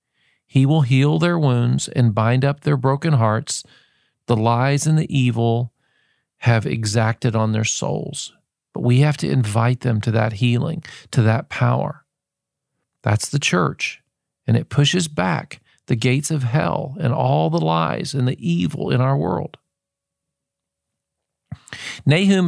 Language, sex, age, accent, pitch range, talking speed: English, male, 40-59, American, 115-145 Hz, 145 wpm